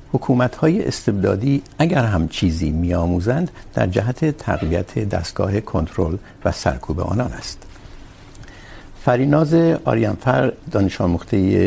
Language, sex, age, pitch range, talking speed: Urdu, male, 60-79, 90-120 Hz, 105 wpm